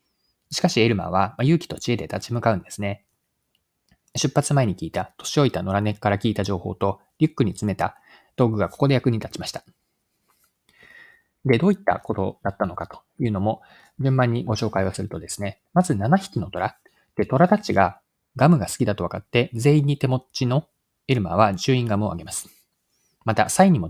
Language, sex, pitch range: Japanese, male, 100-145 Hz